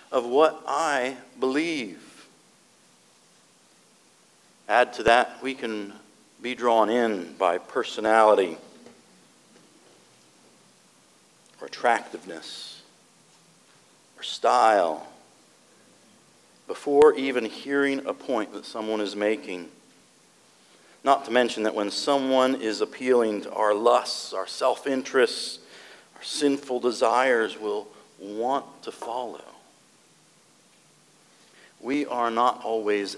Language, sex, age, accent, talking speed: English, male, 50-69, American, 95 wpm